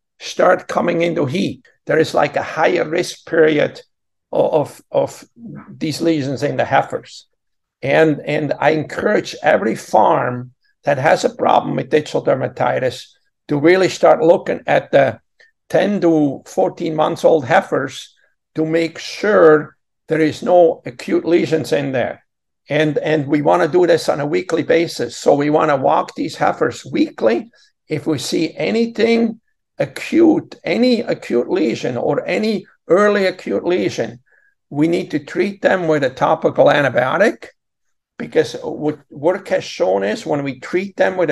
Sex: male